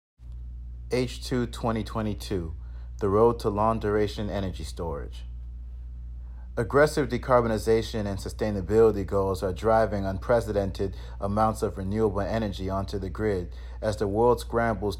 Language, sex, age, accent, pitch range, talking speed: English, male, 30-49, American, 85-110 Hz, 110 wpm